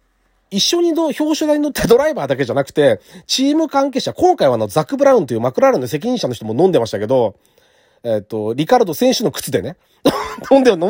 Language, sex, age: Japanese, male, 40-59